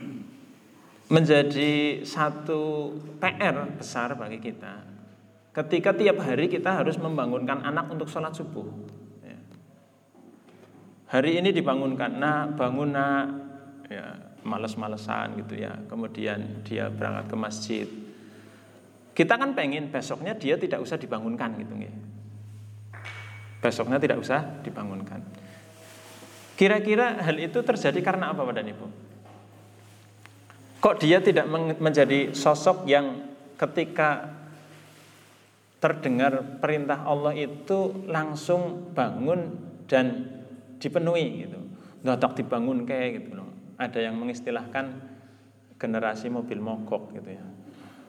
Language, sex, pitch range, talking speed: Indonesian, male, 110-155 Hz, 100 wpm